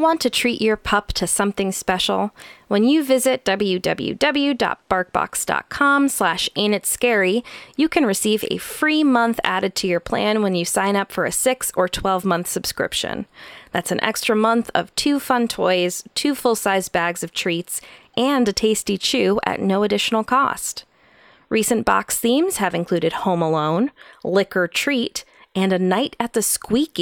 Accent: American